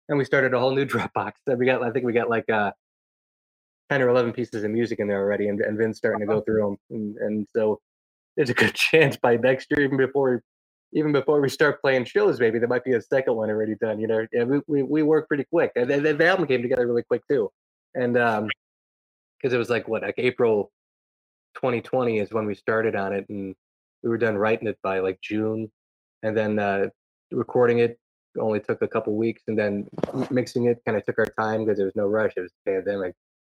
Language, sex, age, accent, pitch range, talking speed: English, male, 20-39, American, 105-130 Hz, 240 wpm